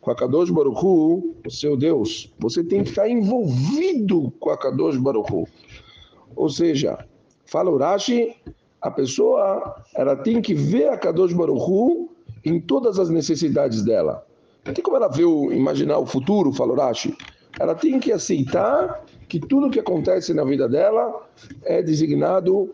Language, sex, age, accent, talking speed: Portuguese, male, 60-79, Brazilian, 145 wpm